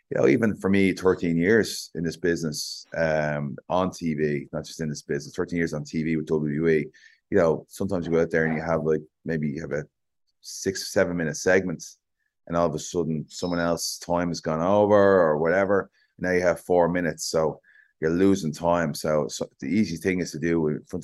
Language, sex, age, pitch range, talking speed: English, male, 30-49, 75-90 Hz, 220 wpm